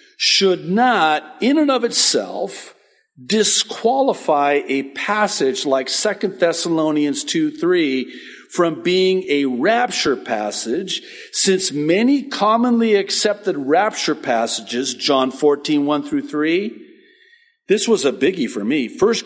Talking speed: 110 wpm